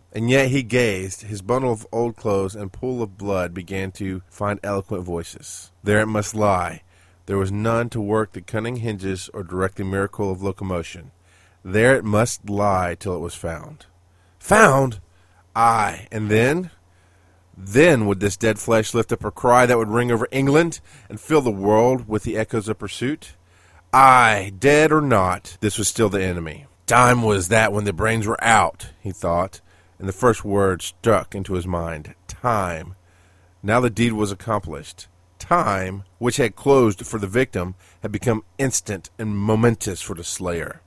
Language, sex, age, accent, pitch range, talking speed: English, male, 30-49, American, 90-110 Hz, 175 wpm